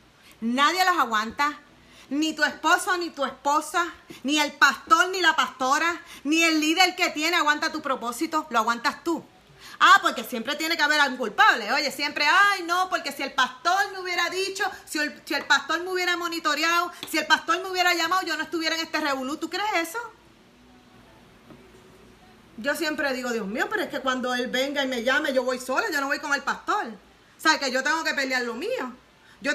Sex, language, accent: female, Spanish, American